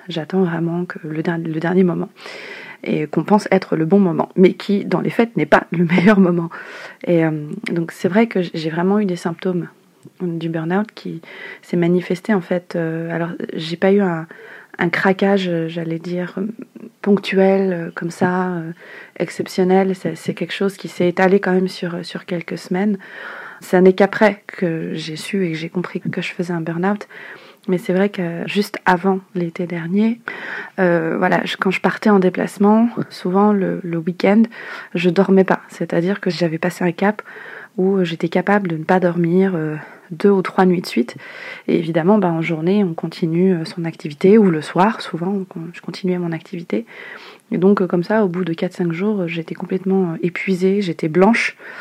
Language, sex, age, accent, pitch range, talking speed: French, female, 30-49, French, 170-200 Hz, 185 wpm